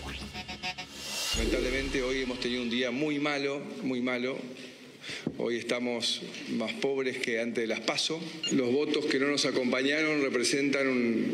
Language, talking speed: Spanish, 140 wpm